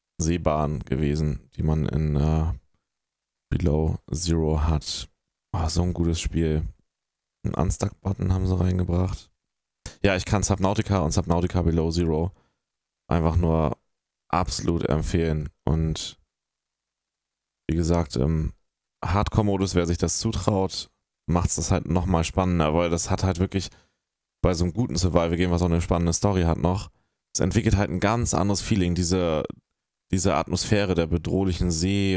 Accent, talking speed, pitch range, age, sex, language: German, 145 wpm, 80-95 Hz, 20-39, male, German